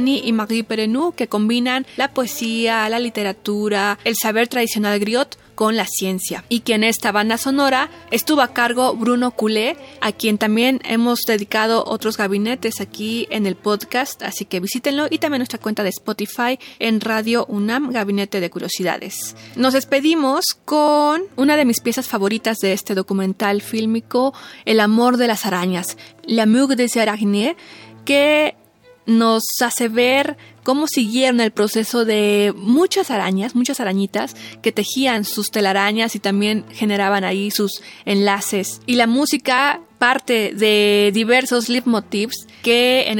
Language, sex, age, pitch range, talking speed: Spanish, female, 20-39, 205-250 Hz, 150 wpm